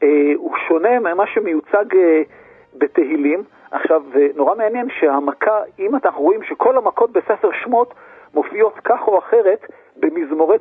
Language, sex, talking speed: Hebrew, male, 120 wpm